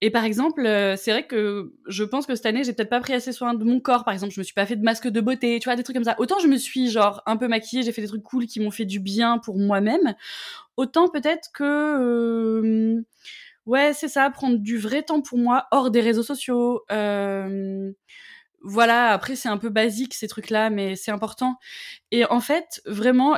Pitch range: 200-245 Hz